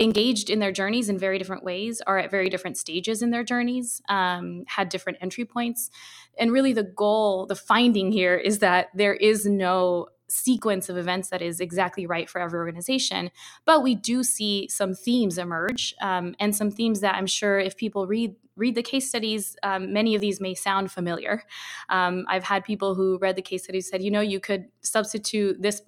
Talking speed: 200 wpm